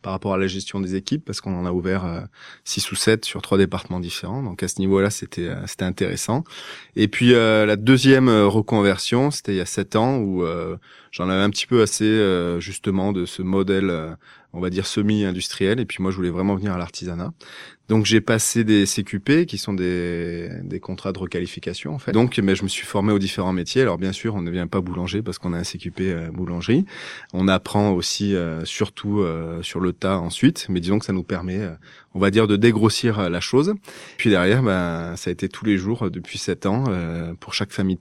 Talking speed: 225 wpm